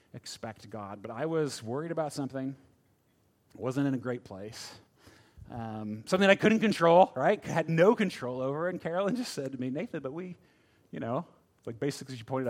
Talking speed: 190 wpm